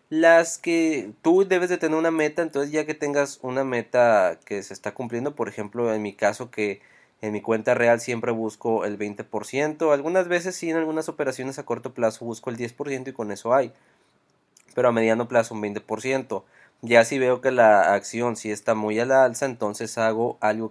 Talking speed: 205 wpm